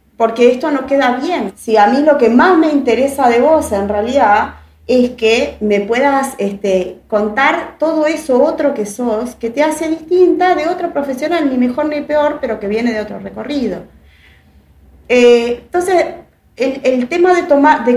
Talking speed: 175 wpm